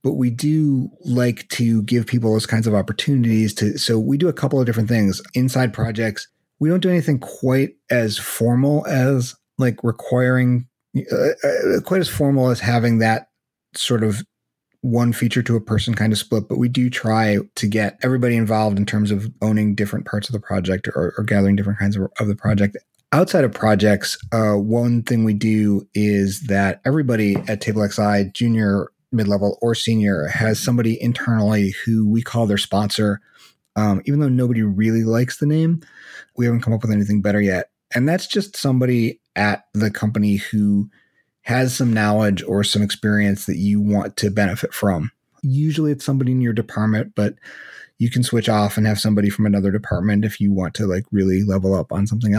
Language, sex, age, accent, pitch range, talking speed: English, male, 30-49, American, 105-125 Hz, 190 wpm